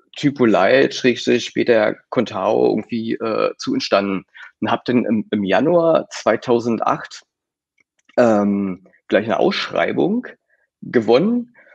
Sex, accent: male, German